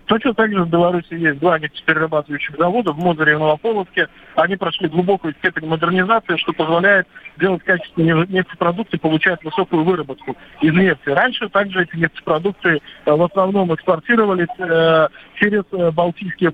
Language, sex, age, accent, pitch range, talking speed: Russian, male, 40-59, native, 160-185 Hz, 125 wpm